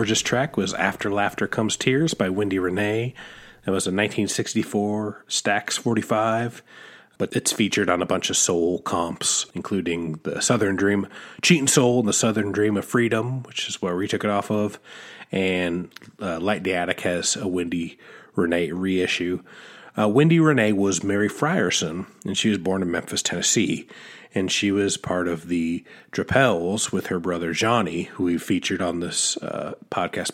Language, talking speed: English, 170 wpm